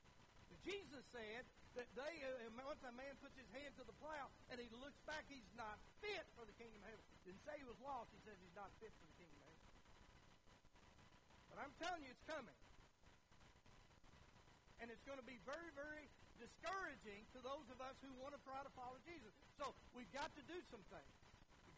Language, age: English, 60-79